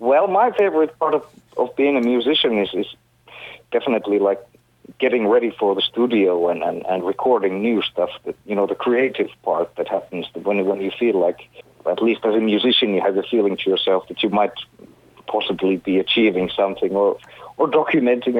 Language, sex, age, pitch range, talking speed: Hebrew, male, 50-69, 95-130 Hz, 190 wpm